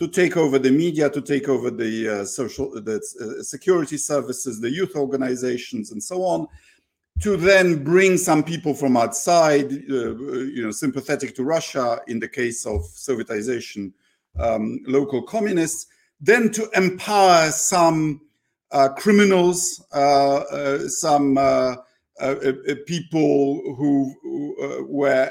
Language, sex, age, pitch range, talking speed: Polish, male, 50-69, 135-170 Hz, 135 wpm